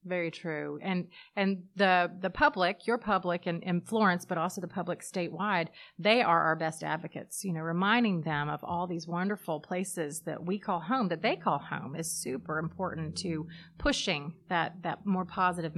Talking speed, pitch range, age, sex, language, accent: 185 wpm, 165-200 Hz, 30-49, female, English, American